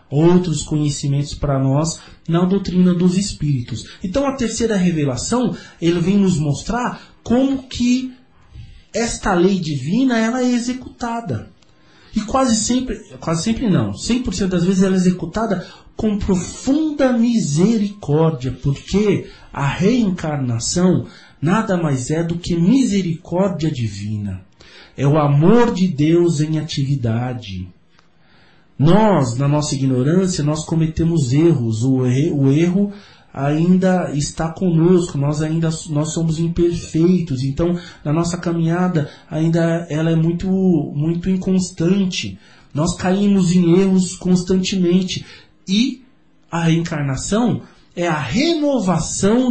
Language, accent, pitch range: Portuguese, Brazilian, 150-200 Hz